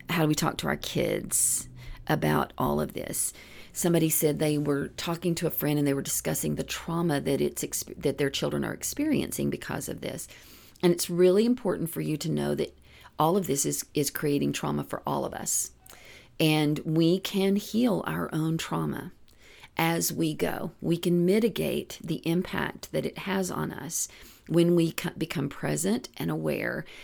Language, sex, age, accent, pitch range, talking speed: English, female, 40-59, American, 150-180 Hz, 180 wpm